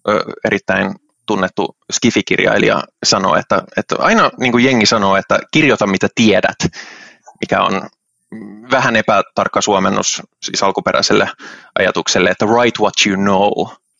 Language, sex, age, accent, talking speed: Finnish, male, 20-39, native, 115 wpm